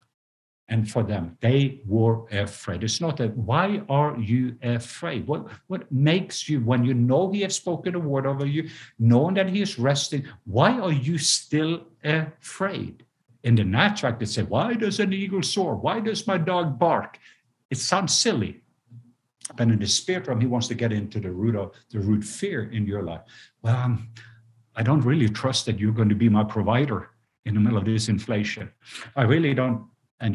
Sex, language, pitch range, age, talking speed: male, English, 105-135 Hz, 60-79, 190 wpm